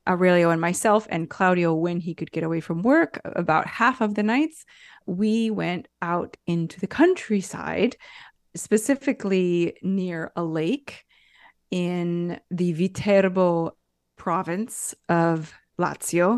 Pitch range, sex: 170-215 Hz, female